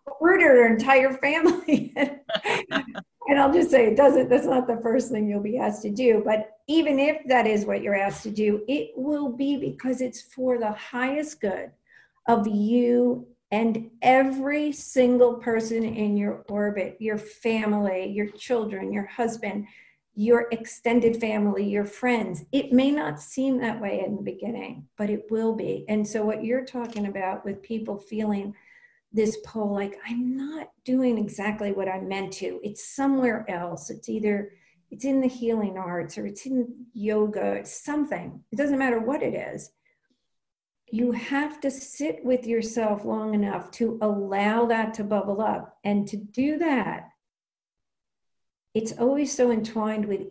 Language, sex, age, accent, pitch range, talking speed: English, female, 50-69, American, 210-260 Hz, 165 wpm